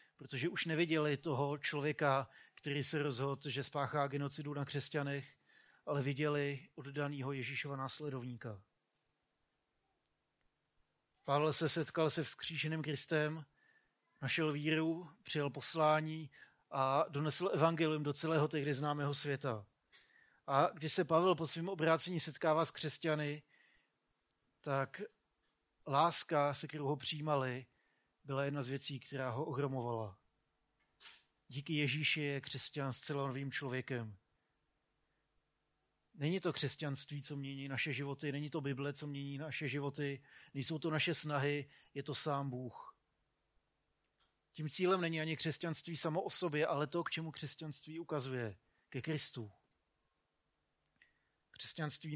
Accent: native